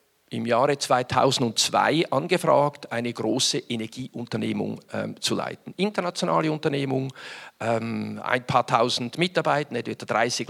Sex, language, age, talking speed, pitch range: male, English, 50-69, 115 wpm, 120-155 Hz